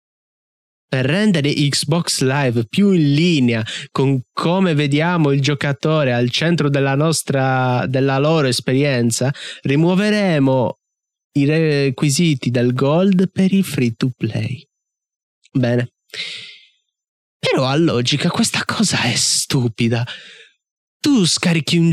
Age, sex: 20-39, male